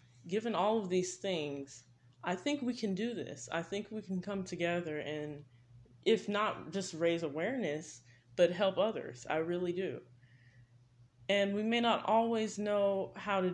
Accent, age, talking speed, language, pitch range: American, 20-39, 165 wpm, English, 125-175 Hz